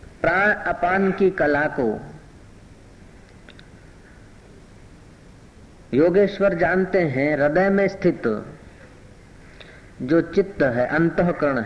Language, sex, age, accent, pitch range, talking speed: Hindi, female, 50-69, native, 130-190 Hz, 75 wpm